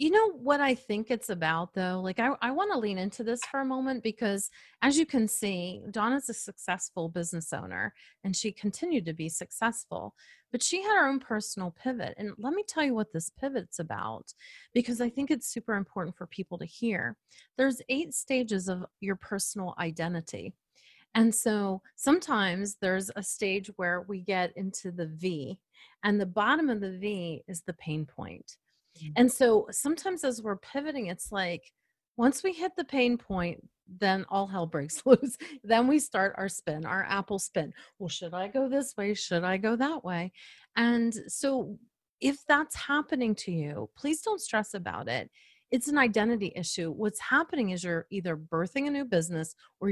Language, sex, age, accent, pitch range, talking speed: English, female, 30-49, American, 180-260 Hz, 185 wpm